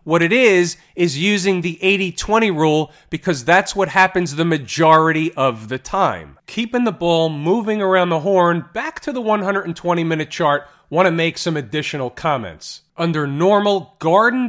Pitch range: 155-190 Hz